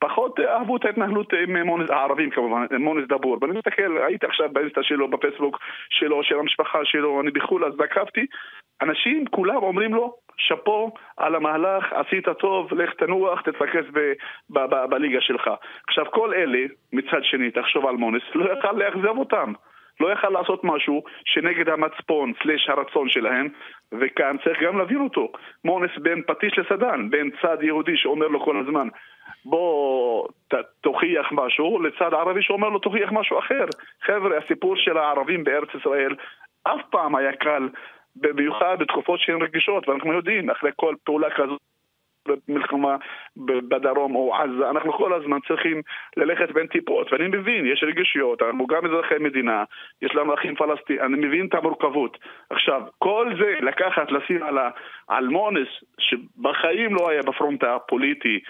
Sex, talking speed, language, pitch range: male, 150 wpm, Hebrew, 145-205 Hz